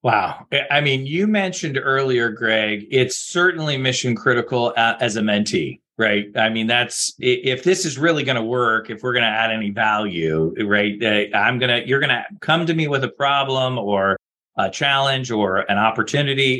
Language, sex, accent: English, male, American